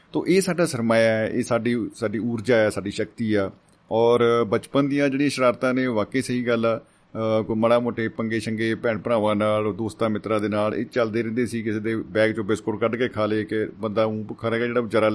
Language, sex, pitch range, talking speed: Punjabi, male, 105-125 Hz, 220 wpm